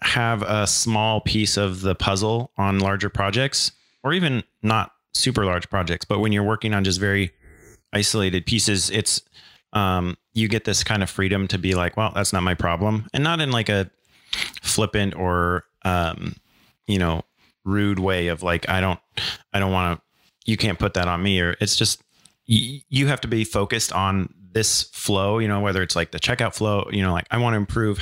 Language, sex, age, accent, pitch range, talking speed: English, male, 30-49, American, 95-110 Hz, 200 wpm